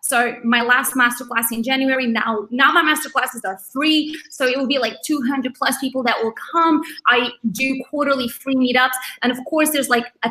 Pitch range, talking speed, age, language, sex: 225-275 Hz, 200 wpm, 20-39, English, female